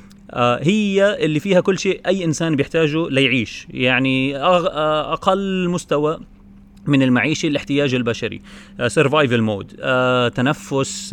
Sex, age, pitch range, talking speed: male, 30-49, 125-160 Hz, 90 wpm